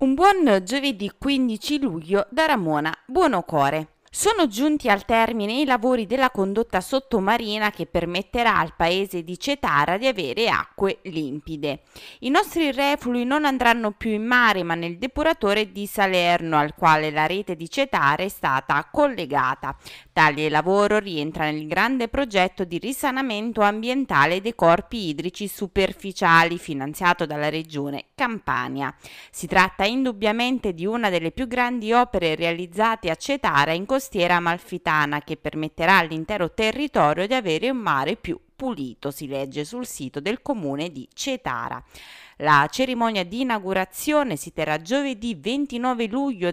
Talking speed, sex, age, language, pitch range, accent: 140 wpm, female, 20-39, Italian, 165-250 Hz, native